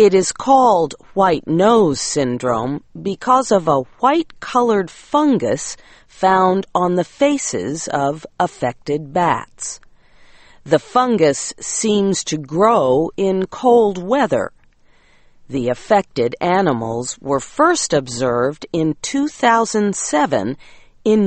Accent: American